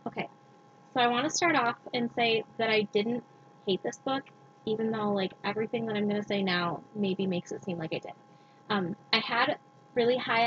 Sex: female